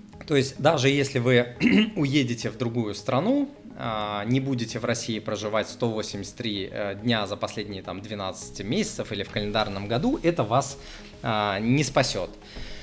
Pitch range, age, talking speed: 110-140 Hz, 20-39, 130 wpm